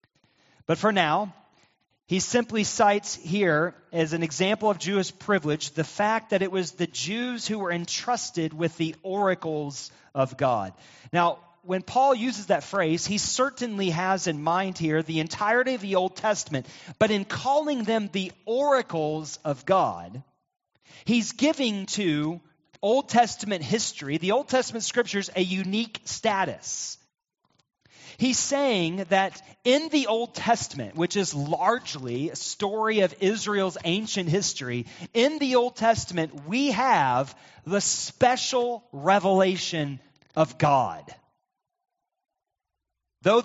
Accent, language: American, English